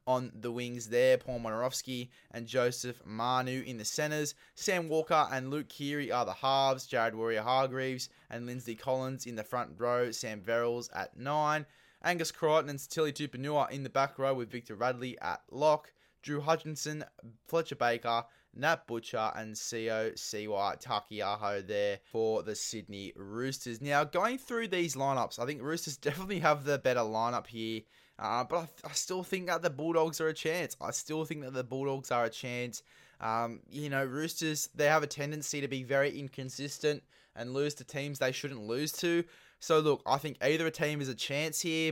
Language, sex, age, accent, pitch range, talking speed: English, male, 20-39, Australian, 120-155 Hz, 185 wpm